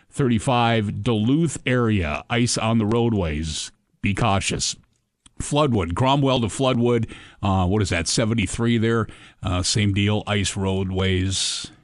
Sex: male